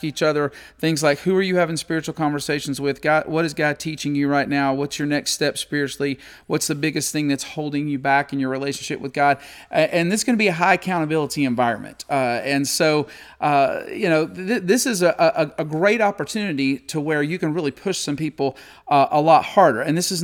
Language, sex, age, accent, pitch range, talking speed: English, male, 40-59, American, 140-180 Hz, 220 wpm